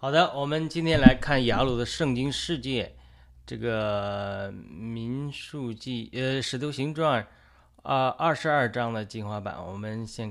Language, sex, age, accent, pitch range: Chinese, male, 20-39, native, 105-130 Hz